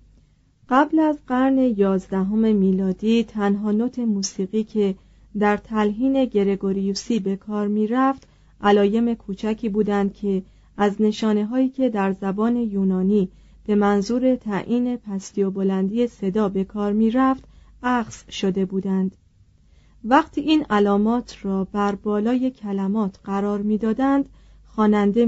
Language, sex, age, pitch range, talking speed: Persian, female, 30-49, 200-240 Hz, 120 wpm